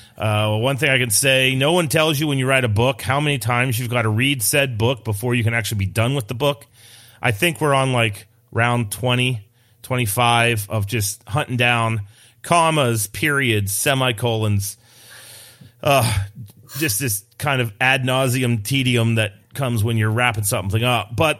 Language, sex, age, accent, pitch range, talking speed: English, male, 30-49, American, 110-130 Hz, 180 wpm